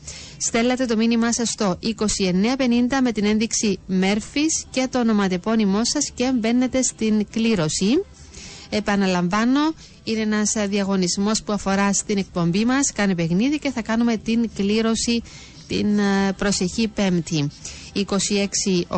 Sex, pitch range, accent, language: female, 175-225 Hz, native, Greek